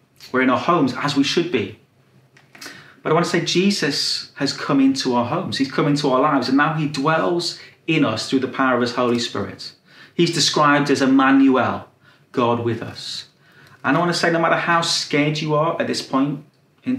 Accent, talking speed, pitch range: British, 210 wpm, 130-160 Hz